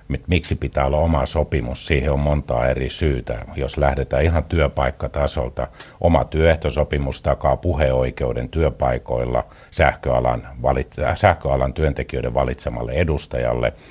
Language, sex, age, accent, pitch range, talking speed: Finnish, male, 60-79, native, 65-75 Hz, 110 wpm